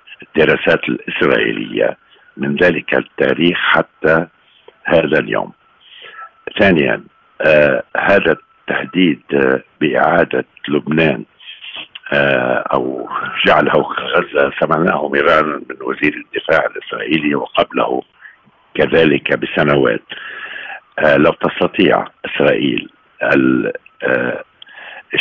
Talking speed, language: 80 wpm, Arabic